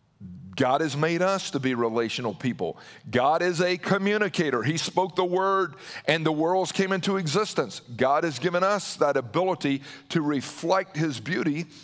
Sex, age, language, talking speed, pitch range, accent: male, 50-69, English, 160 wpm, 145-195 Hz, American